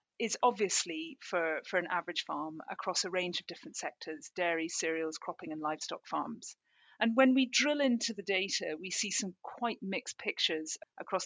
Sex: female